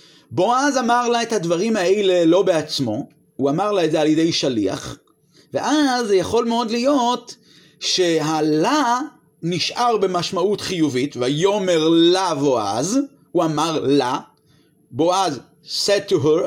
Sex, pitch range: male, 155-240 Hz